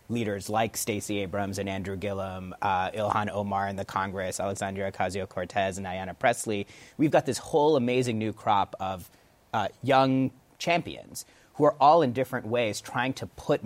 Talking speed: 165 wpm